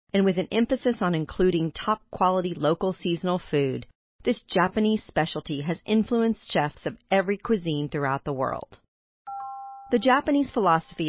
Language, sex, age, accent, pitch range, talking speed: English, female, 40-59, American, 150-205 Hz, 135 wpm